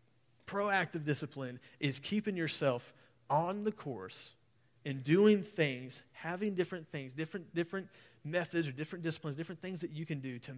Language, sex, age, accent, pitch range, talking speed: English, male, 30-49, American, 120-160 Hz, 155 wpm